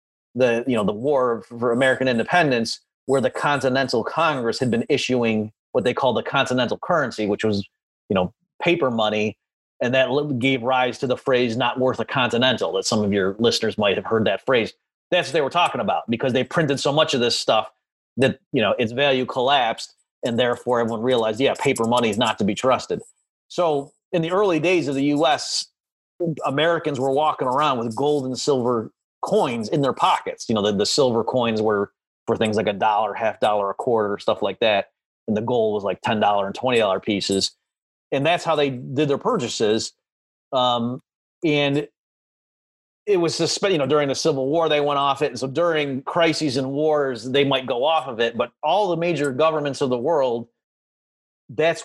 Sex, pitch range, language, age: male, 120-150 Hz, English, 30-49